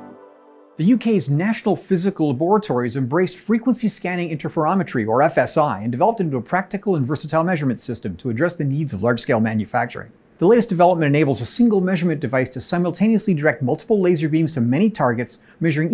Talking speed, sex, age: 175 wpm, male, 50-69